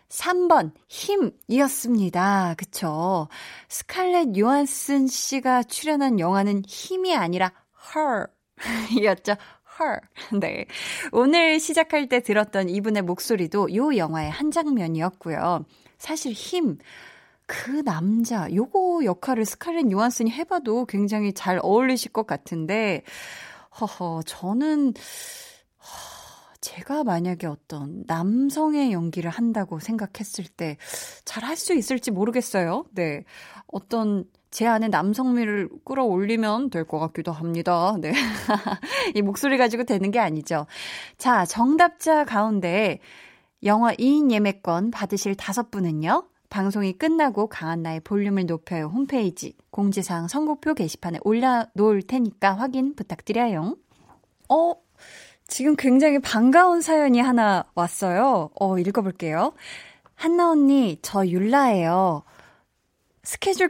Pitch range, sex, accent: 185-275 Hz, female, native